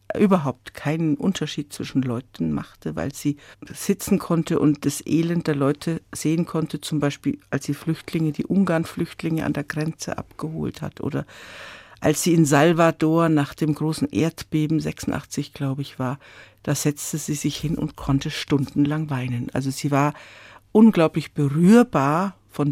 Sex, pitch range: female, 140-165 Hz